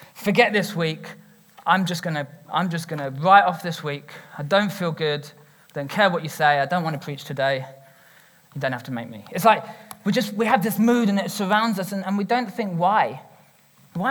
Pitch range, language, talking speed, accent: 155-205 Hz, English, 230 wpm, British